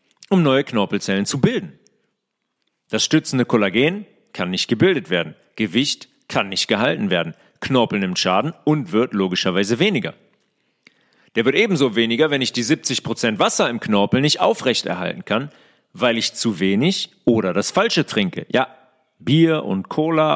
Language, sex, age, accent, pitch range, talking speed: German, male, 40-59, German, 115-165 Hz, 145 wpm